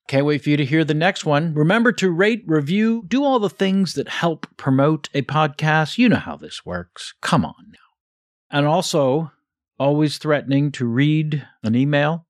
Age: 50-69